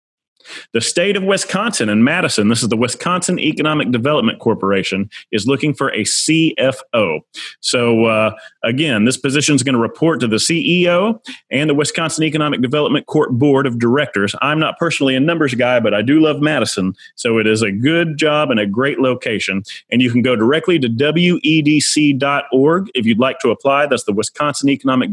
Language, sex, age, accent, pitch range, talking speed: English, male, 30-49, American, 115-155 Hz, 180 wpm